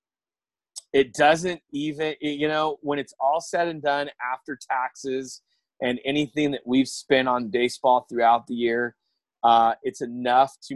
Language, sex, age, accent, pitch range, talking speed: English, male, 30-49, American, 110-130 Hz, 150 wpm